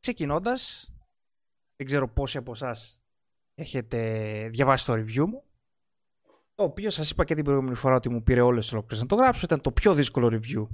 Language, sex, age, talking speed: Greek, male, 20-39, 180 wpm